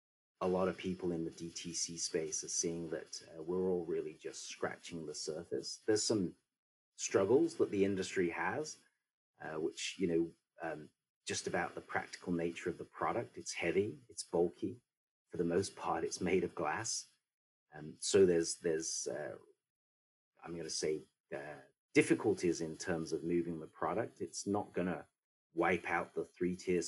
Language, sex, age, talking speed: English, male, 30-49, 170 wpm